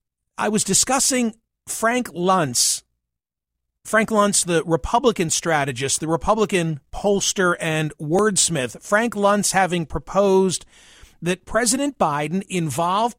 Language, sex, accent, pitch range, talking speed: English, male, American, 165-210 Hz, 105 wpm